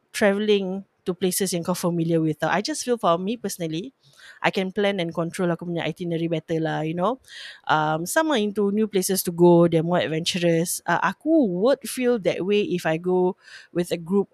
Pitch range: 170-220 Hz